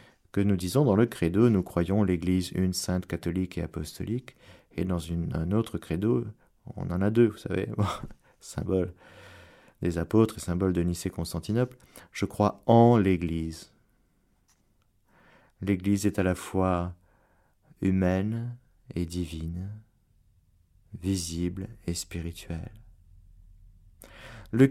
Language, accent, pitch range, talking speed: French, French, 90-120 Hz, 125 wpm